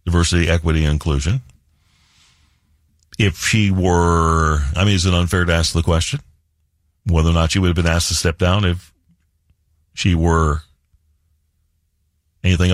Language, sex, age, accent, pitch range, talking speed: English, male, 60-79, American, 80-110 Hz, 145 wpm